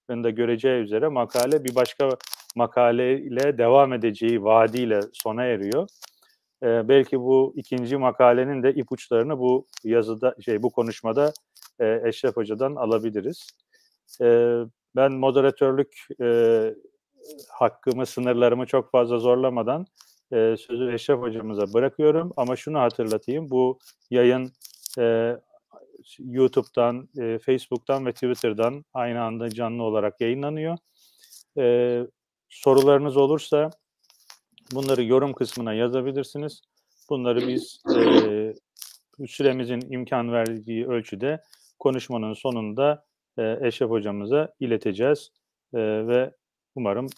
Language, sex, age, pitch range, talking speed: Turkish, male, 40-59, 115-140 Hz, 95 wpm